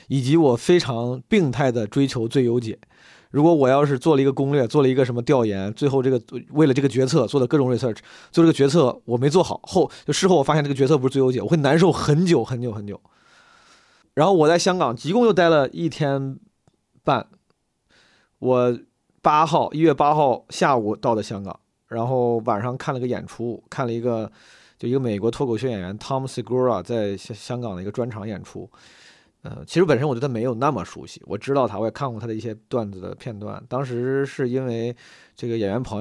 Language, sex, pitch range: Chinese, male, 120-150 Hz